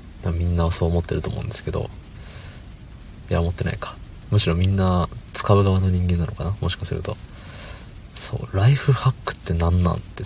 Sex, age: male, 40-59